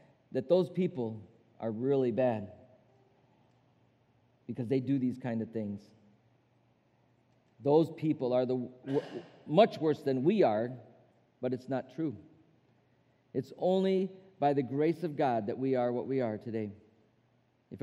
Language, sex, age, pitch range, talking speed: English, male, 40-59, 120-140 Hz, 145 wpm